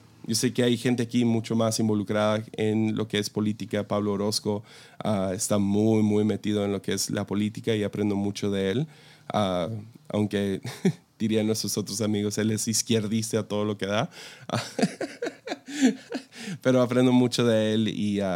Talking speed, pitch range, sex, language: 175 wpm, 105-125 Hz, male, Spanish